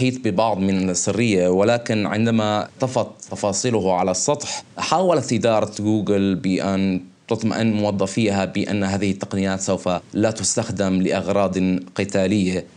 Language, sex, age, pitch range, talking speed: Arabic, male, 20-39, 95-115 Hz, 110 wpm